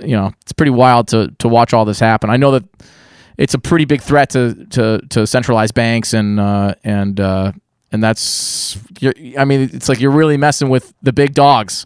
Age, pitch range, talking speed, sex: 20-39, 115-140 Hz, 210 wpm, male